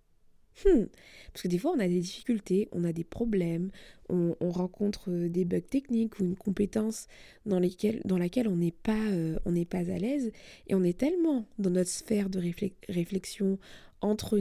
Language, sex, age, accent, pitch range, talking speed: French, female, 20-39, French, 185-230 Hz, 175 wpm